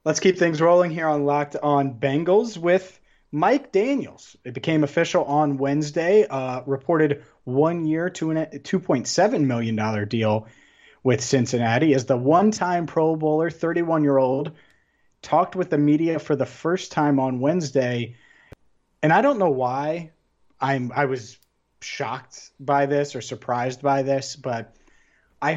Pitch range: 125-155 Hz